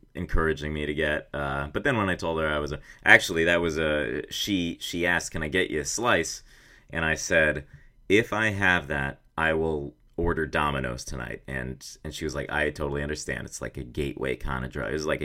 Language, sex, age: English, male, 30-49